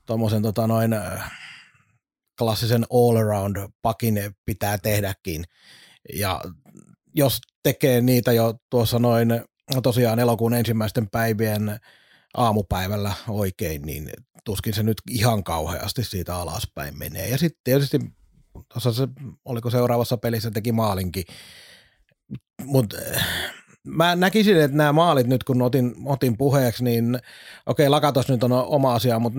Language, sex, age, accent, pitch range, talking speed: Finnish, male, 30-49, native, 110-135 Hz, 110 wpm